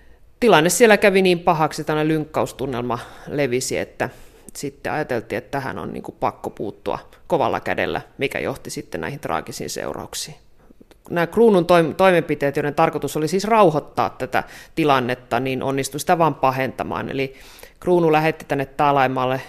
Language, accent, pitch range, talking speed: Finnish, native, 130-165 Hz, 135 wpm